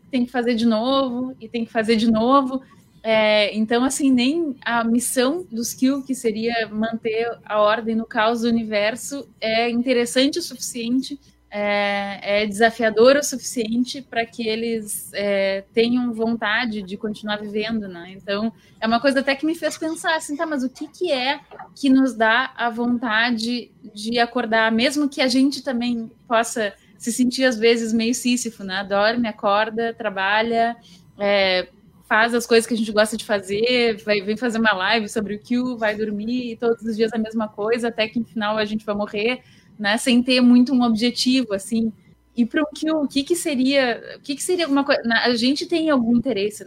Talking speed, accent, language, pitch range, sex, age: 190 wpm, Brazilian, Portuguese, 210-245 Hz, female, 20-39